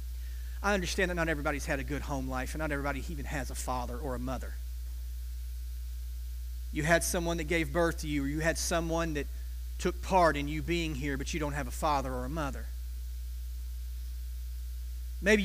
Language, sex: English, male